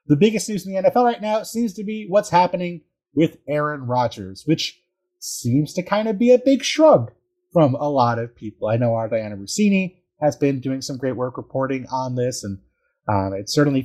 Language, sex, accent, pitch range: English, male, American, 110-160 Hz